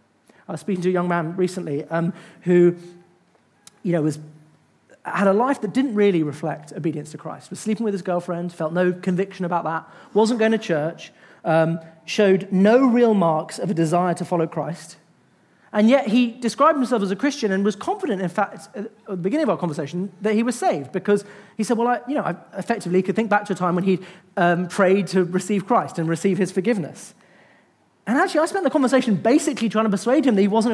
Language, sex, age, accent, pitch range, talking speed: English, male, 40-59, British, 185-270 Hz, 215 wpm